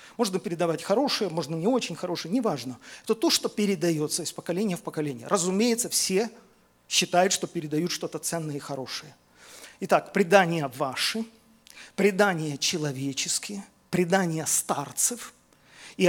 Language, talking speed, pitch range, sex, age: Russian, 125 wpm, 165-230 Hz, male, 40-59